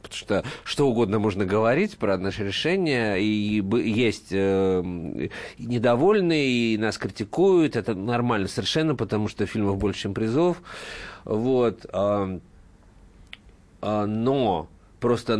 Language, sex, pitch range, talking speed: Russian, male, 100-125 Hz, 110 wpm